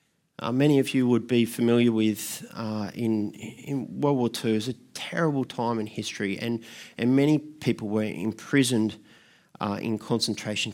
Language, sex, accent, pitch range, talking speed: English, male, Australian, 110-135 Hz, 170 wpm